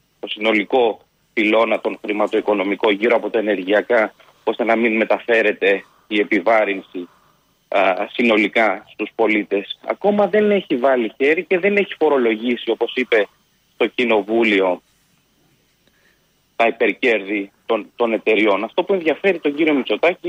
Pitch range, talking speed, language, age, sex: 115-190 Hz, 125 wpm, Greek, 30-49, male